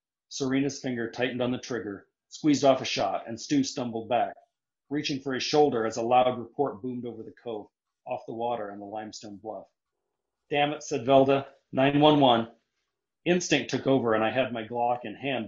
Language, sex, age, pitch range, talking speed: English, male, 40-59, 115-135 Hz, 185 wpm